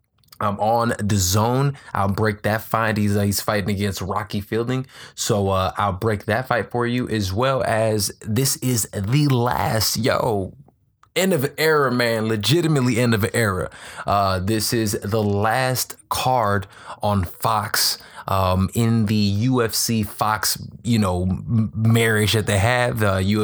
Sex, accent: male, American